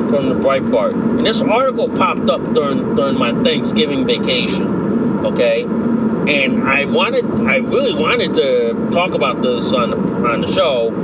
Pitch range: 215-240 Hz